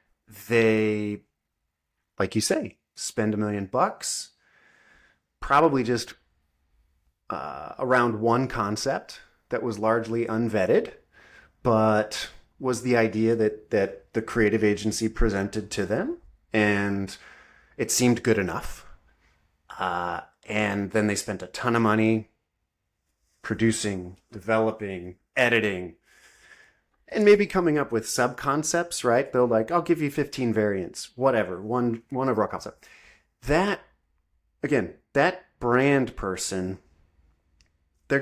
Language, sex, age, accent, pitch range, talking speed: English, male, 30-49, American, 100-130 Hz, 115 wpm